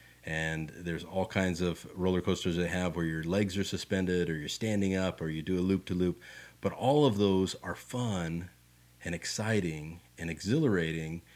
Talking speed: 175 wpm